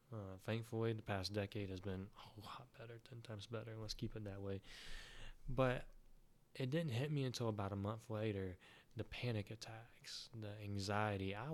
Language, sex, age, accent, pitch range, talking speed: English, male, 20-39, American, 105-140 Hz, 170 wpm